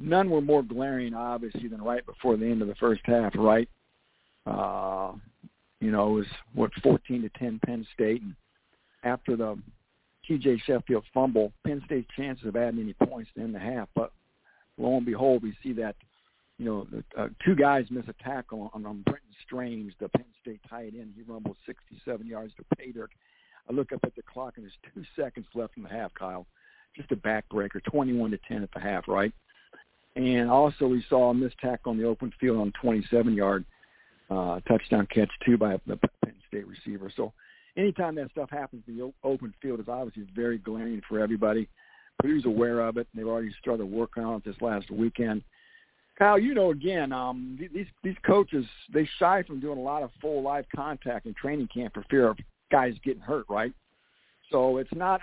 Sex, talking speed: male, 195 wpm